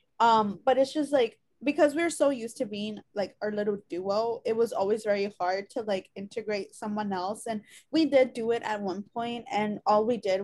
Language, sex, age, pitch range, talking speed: English, female, 20-39, 200-245 Hz, 215 wpm